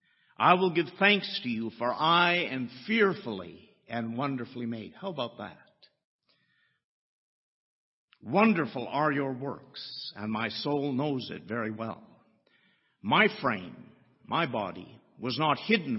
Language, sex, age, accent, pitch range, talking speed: English, male, 50-69, American, 120-165 Hz, 130 wpm